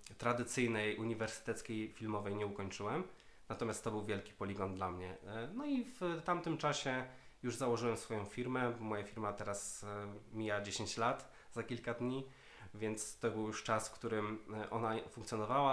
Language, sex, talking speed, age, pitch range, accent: Polish, male, 155 wpm, 20-39, 100-120 Hz, native